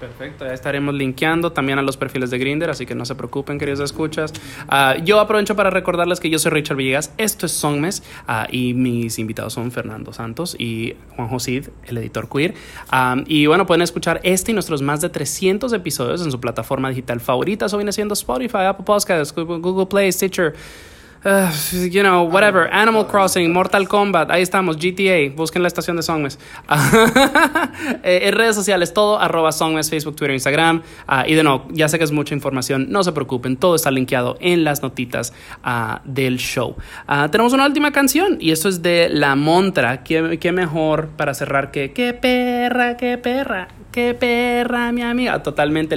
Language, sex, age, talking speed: English, male, 20-39, 185 wpm